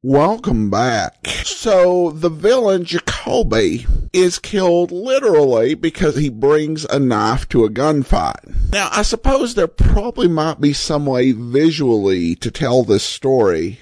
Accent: American